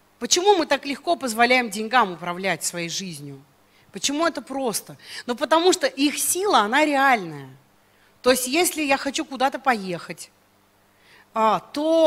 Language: Russian